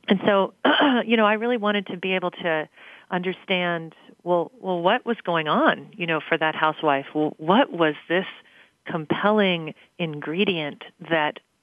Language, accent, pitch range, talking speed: English, American, 150-185 Hz, 155 wpm